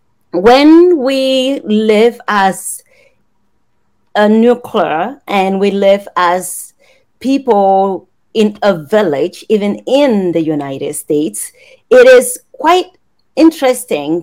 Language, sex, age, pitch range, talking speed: English, female, 30-49, 195-275 Hz, 95 wpm